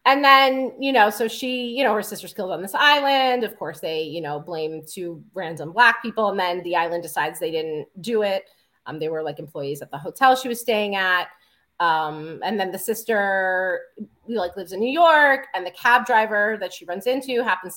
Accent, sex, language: American, female, English